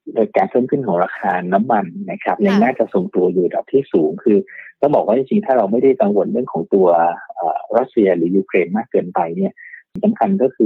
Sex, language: male, Thai